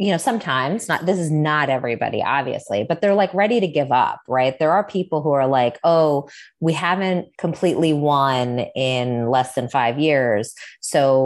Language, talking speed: English, 180 wpm